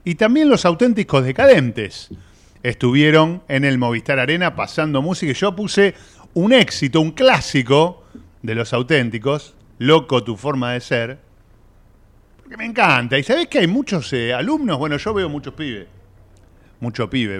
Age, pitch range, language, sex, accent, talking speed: 40-59, 105-145 Hz, Spanish, male, Argentinian, 150 wpm